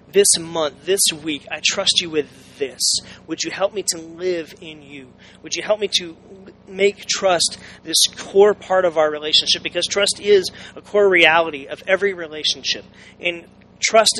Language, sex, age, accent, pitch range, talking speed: English, male, 30-49, American, 160-195 Hz, 175 wpm